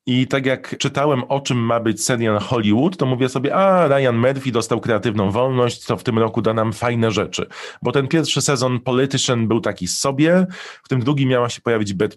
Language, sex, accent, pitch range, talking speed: Polish, male, native, 105-130 Hz, 205 wpm